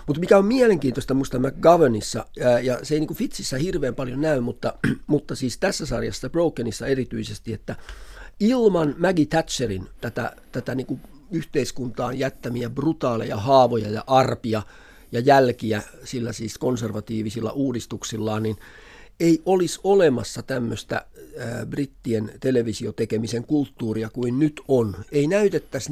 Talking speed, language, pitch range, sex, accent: 125 wpm, Finnish, 115-145 Hz, male, native